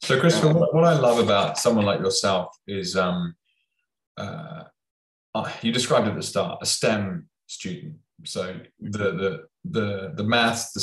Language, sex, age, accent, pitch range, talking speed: English, male, 20-39, British, 95-145 Hz, 140 wpm